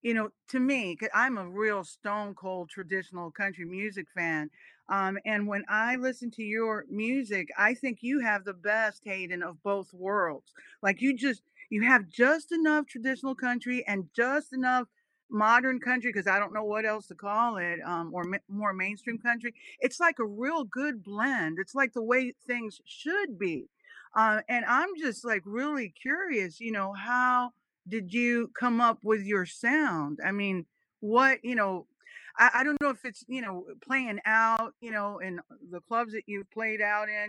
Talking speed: 185 wpm